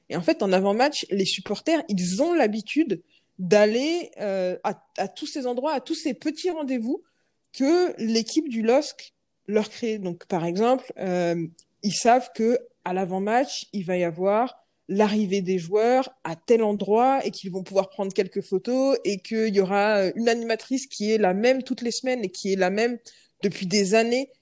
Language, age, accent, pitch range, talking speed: French, 20-39, French, 195-255 Hz, 185 wpm